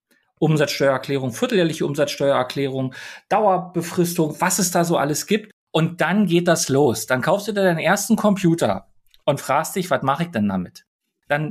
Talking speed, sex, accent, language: 160 wpm, male, German, German